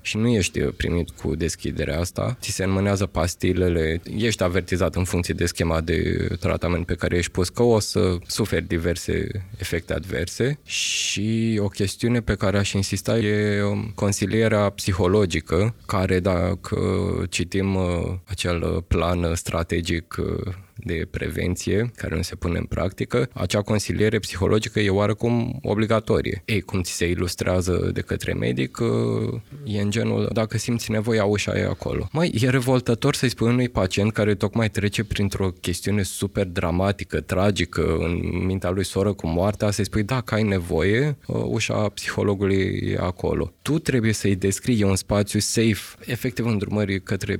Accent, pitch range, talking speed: native, 90-110 Hz, 150 wpm